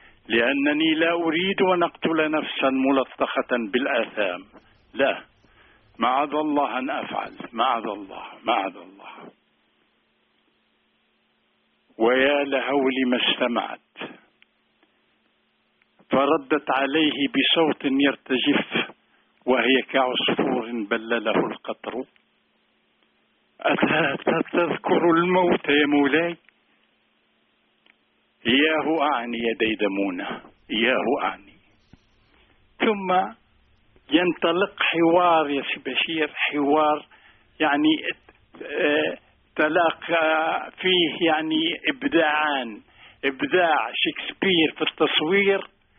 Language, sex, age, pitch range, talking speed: Arabic, male, 60-79, 115-165 Hz, 70 wpm